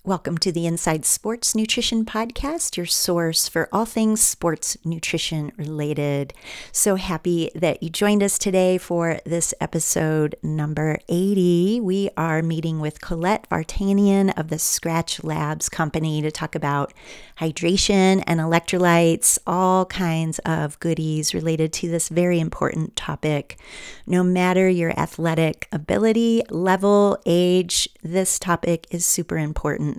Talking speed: 130 wpm